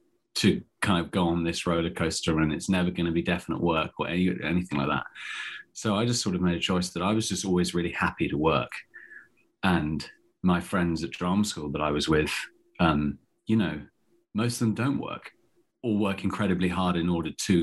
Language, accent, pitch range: English, British, 80-95 Hz